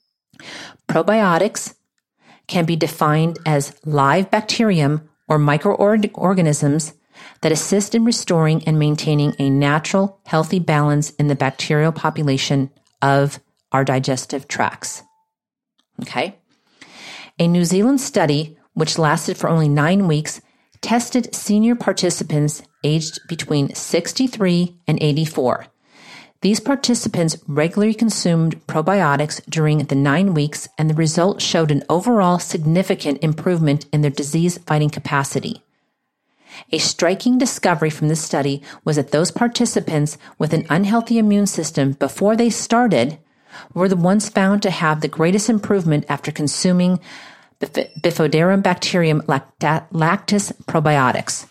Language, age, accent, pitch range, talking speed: English, 40-59, American, 150-200 Hz, 120 wpm